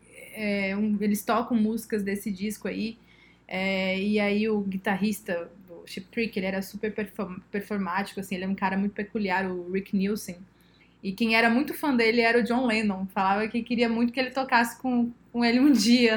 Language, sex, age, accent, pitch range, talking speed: Portuguese, female, 20-39, Brazilian, 205-235 Hz, 180 wpm